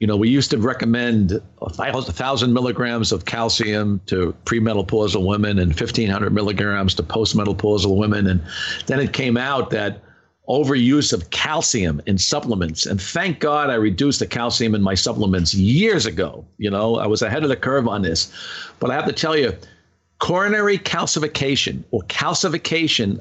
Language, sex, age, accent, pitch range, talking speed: English, male, 50-69, American, 105-145 Hz, 165 wpm